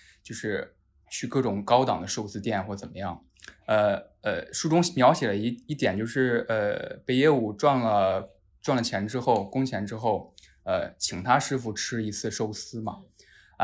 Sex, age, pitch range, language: male, 20-39, 105-135 Hz, Chinese